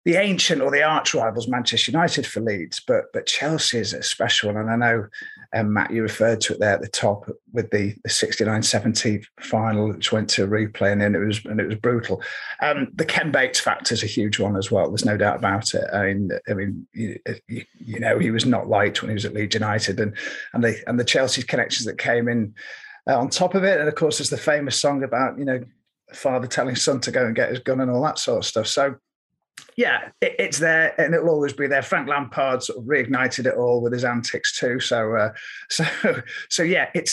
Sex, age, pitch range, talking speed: male, 30-49, 110-165 Hz, 235 wpm